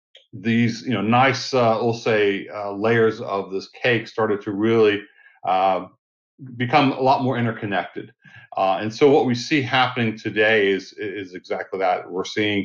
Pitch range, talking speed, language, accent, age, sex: 100-125 Hz, 165 wpm, English, American, 40-59, male